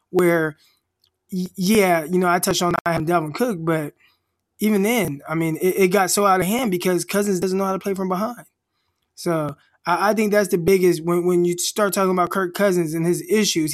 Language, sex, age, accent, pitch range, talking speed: English, male, 20-39, American, 180-225 Hz, 220 wpm